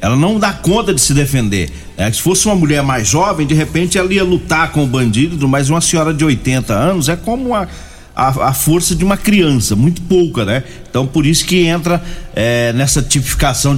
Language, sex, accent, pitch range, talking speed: Portuguese, male, Brazilian, 130-180 Hz, 210 wpm